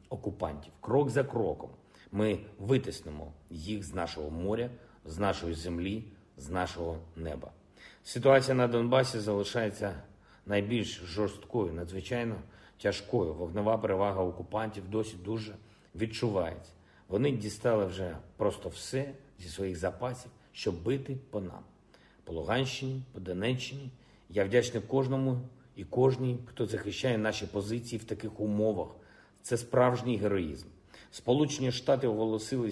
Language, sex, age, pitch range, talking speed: Ukrainian, male, 50-69, 95-120 Hz, 115 wpm